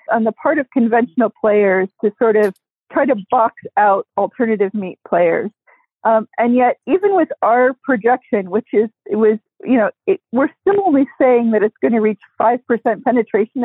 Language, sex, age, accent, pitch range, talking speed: English, female, 40-59, American, 215-260 Hz, 175 wpm